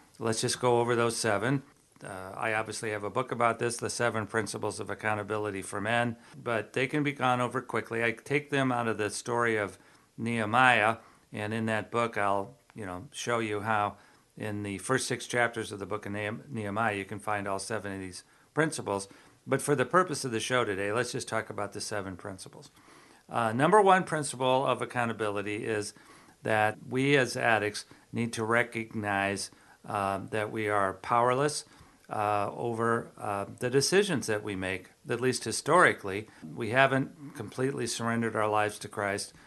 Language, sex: English, male